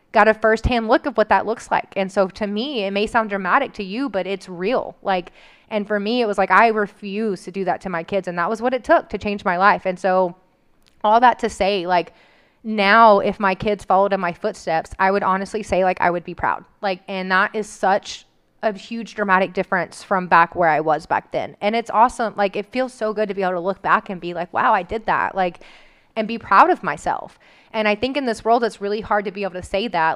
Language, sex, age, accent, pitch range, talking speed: English, female, 20-39, American, 185-215 Hz, 255 wpm